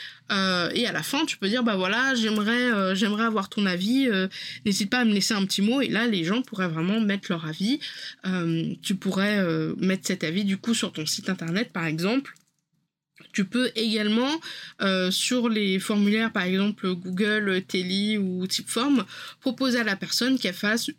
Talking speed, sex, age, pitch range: 195 wpm, female, 20-39, 190-235 Hz